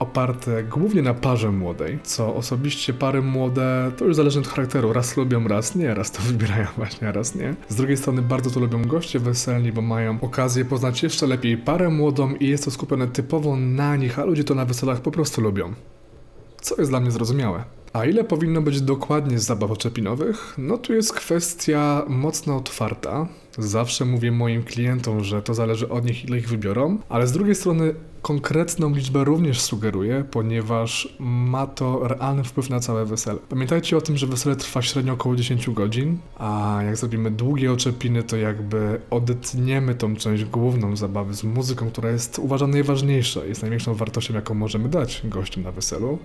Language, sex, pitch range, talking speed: Polish, male, 115-145 Hz, 185 wpm